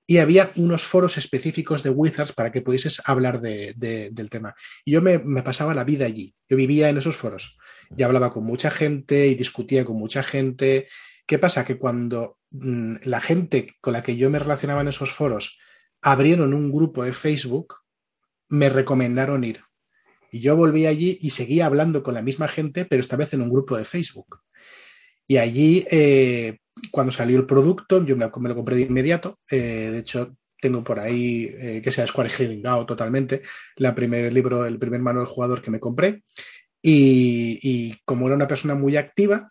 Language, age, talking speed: Spanish, 30-49, 190 wpm